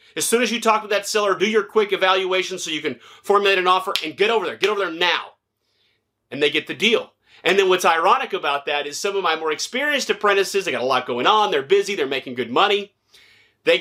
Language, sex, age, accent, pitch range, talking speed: English, male, 30-49, American, 160-255 Hz, 250 wpm